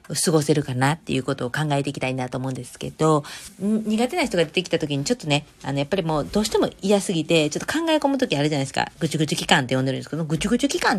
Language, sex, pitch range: Japanese, female, 145-210 Hz